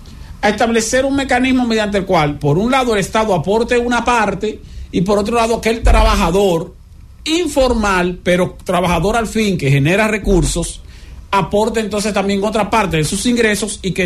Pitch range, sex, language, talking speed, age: 150-215 Hz, male, English, 170 wpm, 50-69